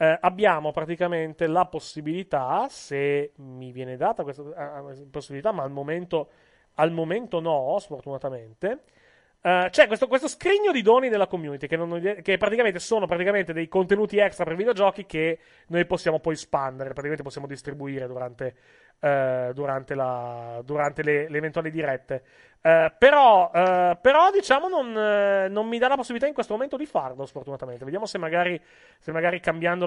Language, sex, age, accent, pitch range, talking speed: Italian, male, 30-49, native, 140-200 Hz, 155 wpm